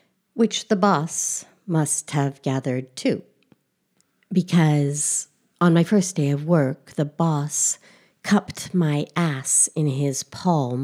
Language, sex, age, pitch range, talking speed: English, female, 60-79, 140-170 Hz, 120 wpm